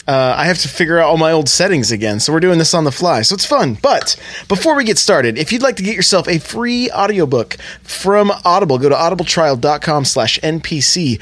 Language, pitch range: English, 130-180 Hz